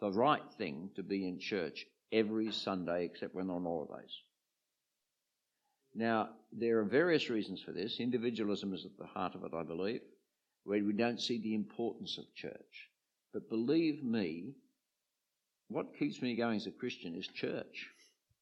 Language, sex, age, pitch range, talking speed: English, male, 50-69, 110-160 Hz, 160 wpm